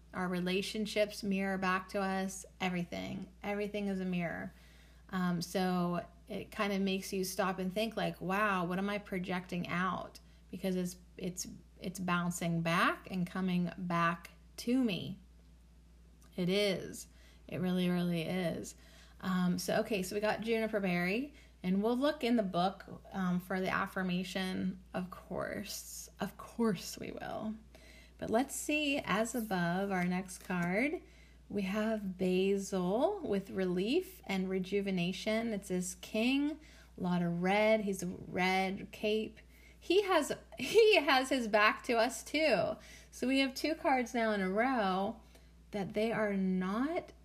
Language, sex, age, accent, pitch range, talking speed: English, female, 30-49, American, 180-220 Hz, 150 wpm